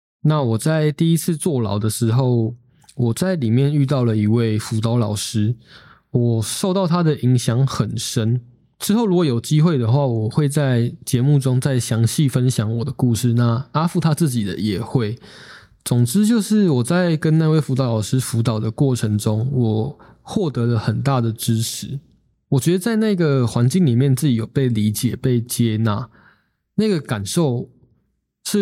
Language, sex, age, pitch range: Chinese, male, 20-39, 115-145 Hz